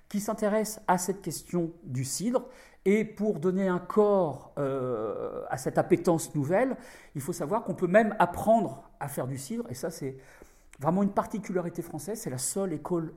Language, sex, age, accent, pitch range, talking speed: French, male, 50-69, French, 150-210 Hz, 180 wpm